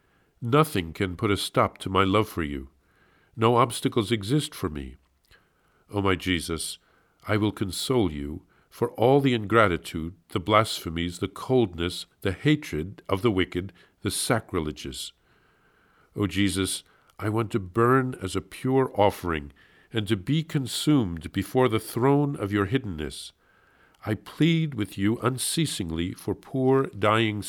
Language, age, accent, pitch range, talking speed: English, 50-69, American, 90-120 Hz, 140 wpm